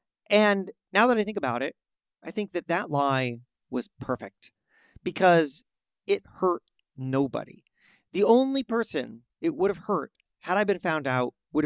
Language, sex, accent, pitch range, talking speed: English, male, American, 150-220 Hz, 160 wpm